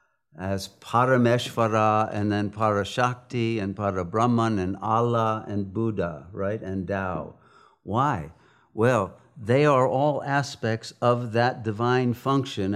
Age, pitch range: 60-79, 105-125 Hz